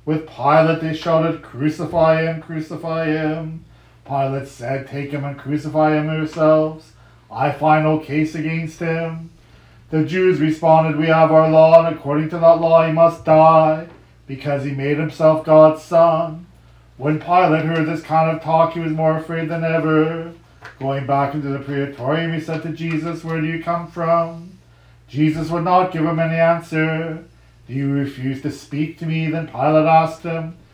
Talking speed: 170 wpm